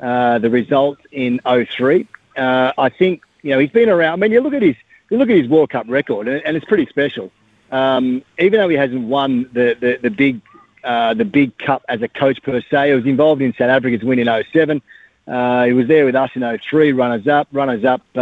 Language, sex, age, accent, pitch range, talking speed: English, male, 40-59, Australian, 125-155 Hz, 225 wpm